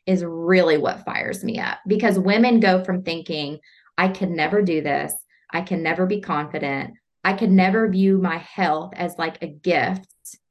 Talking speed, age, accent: 175 wpm, 20-39, American